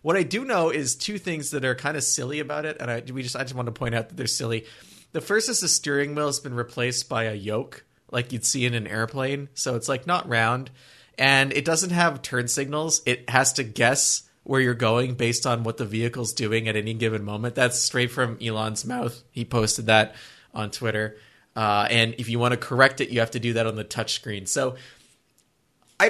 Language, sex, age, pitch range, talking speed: English, male, 30-49, 115-145 Hz, 230 wpm